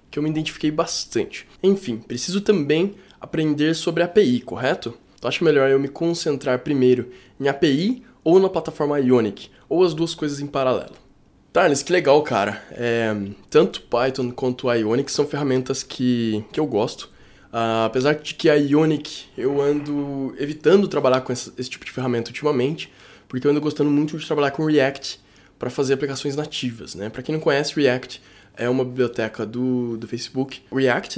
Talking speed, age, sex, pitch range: 175 wpm, 20-39, male, 120-150 Hz